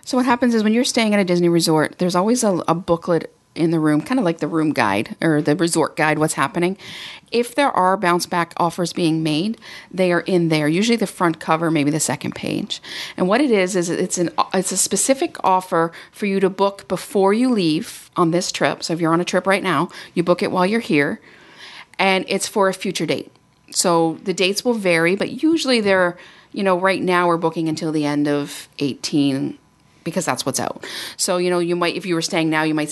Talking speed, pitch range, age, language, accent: 230 wpm, 165-195 Hz, 40-59, English, American